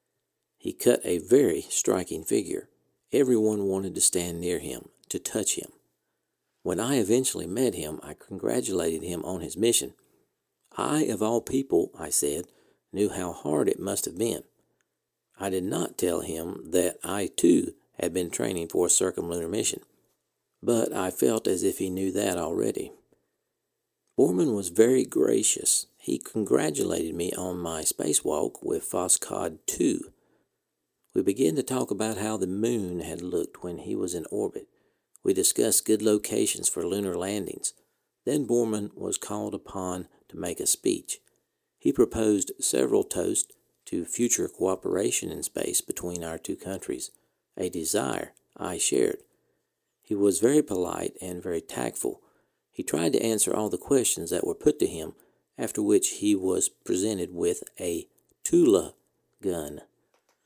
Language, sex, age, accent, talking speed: English, male, 50-69, American, 150 wpm